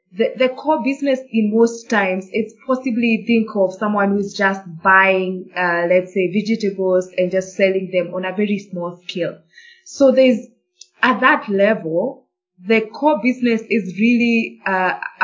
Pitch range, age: 185-220 Hz, 20-39